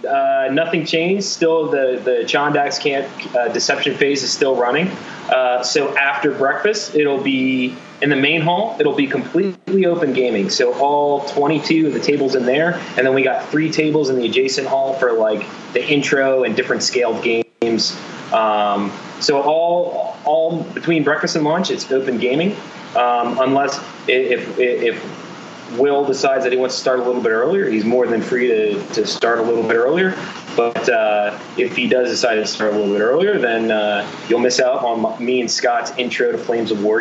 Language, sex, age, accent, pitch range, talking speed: English, male, 30-49, American, 120-155 Hz, 195 wpm